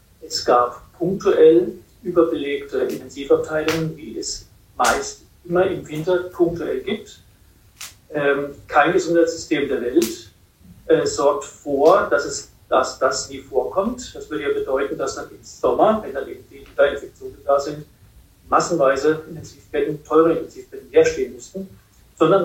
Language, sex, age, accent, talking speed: German, male, 50-69, German, 130 wpm